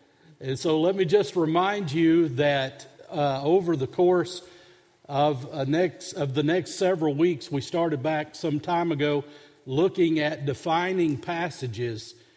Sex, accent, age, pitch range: male, American, 50-69, 145-175 Hz